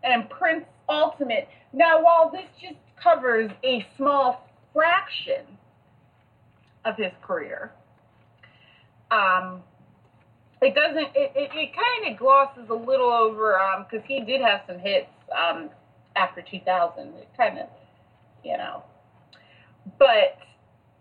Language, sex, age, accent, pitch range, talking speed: English, female, 30-49, American, 185-275 Hz, 120 wpm